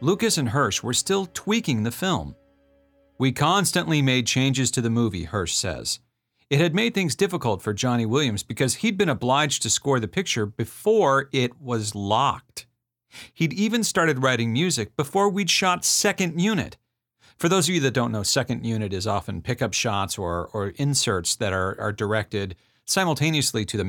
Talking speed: 175 wpm